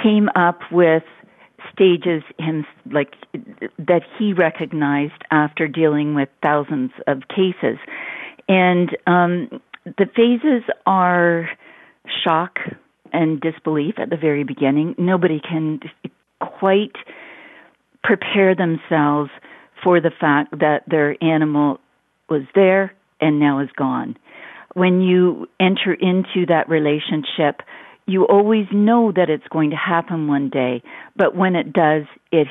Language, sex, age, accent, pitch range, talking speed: English, female, 50-69, American, 155-185 Hz, 120 wpm